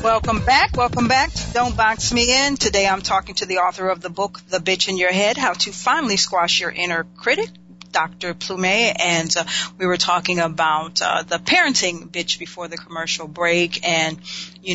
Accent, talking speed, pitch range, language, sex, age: American, 195 wpm, 170-200 Hz, English, female, 40-59